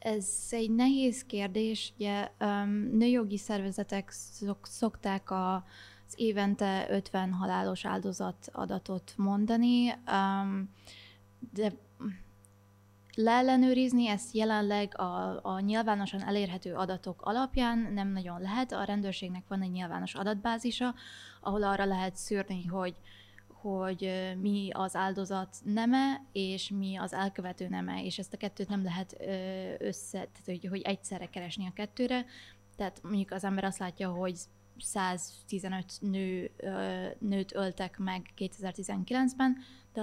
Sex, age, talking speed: female, 20-39, 110 wpm